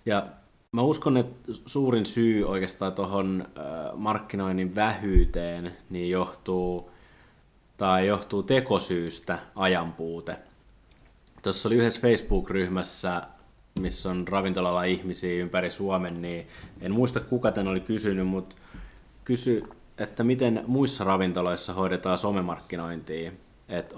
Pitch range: 85-100 Hz